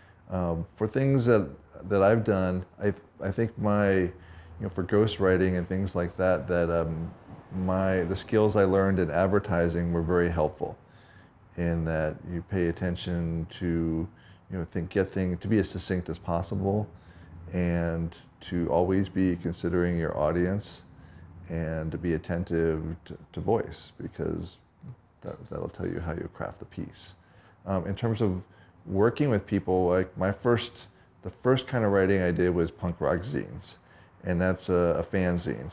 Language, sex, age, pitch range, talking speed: English, male, 40-59, 85-95 Hz, 170 wpm